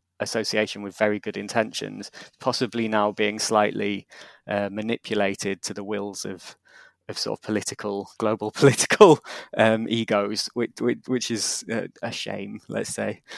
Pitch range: 105-115 Hz